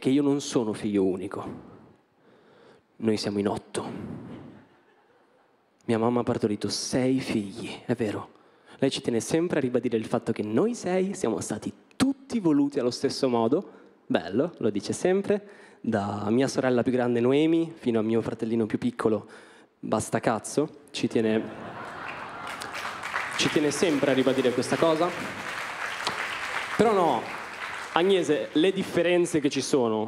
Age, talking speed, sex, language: 20-39, 140 wpm, male, Italian